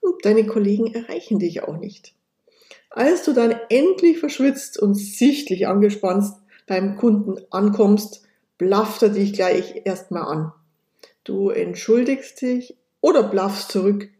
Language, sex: German, female